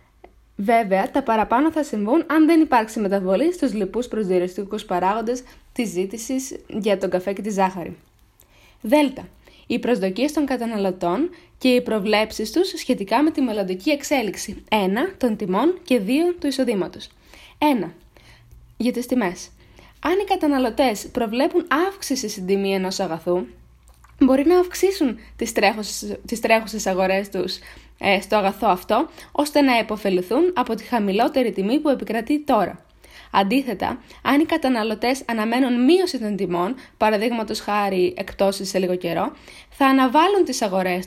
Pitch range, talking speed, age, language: 195-280 Hz, 140 wpm, 20-39, Greek